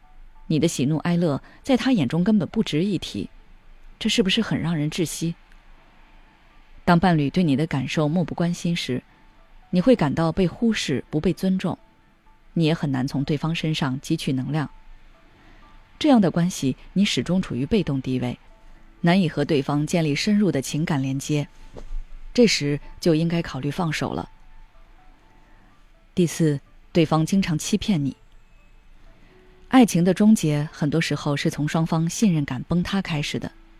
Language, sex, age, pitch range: Chinese, female, 20-39, 145-185 Hz